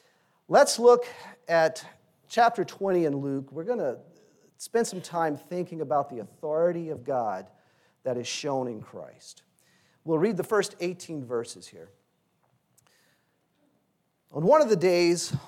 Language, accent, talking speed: English, American, 140 wpm